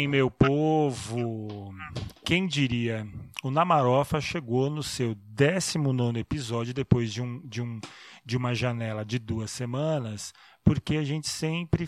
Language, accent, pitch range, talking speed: Portuguese, Brazilian, 125-160 Hz, 130 wpm